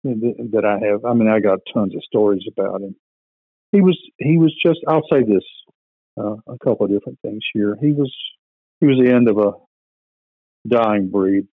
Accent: American